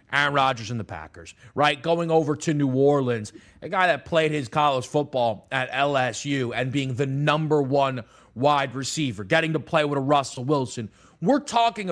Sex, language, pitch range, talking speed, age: male, English, 130-180 Hz, 180 wpm, 30-49